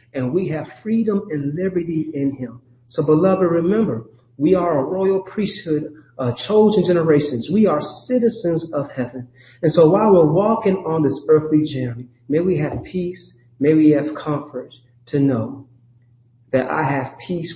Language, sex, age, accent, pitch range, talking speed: English, male, 40-59, American, 115-130 Hz, 160 wpm